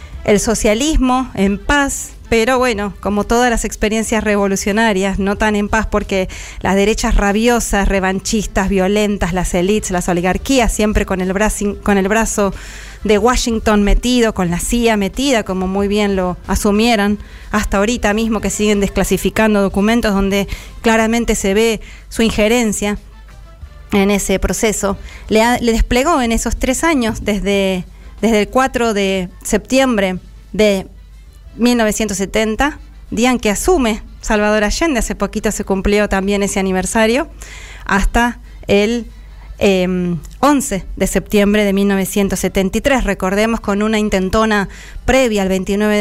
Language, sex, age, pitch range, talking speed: Spanish, female, 20-39, 195-225 Hz, 130 wpm